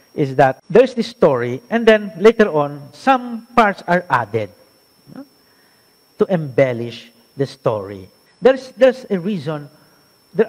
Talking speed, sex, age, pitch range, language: 135 wpm, male, 50-69, 135-205 Hz, Filipino